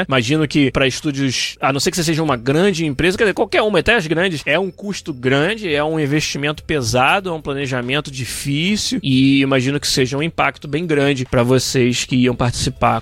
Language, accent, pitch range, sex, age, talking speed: Portuguese, Brazilian, 135-185 Hz, male, 20-39, 205 wpm